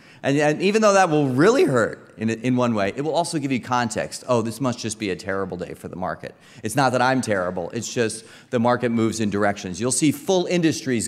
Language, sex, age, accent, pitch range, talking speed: English, male, 30-49, American, 110-140 Hz, 245 wpm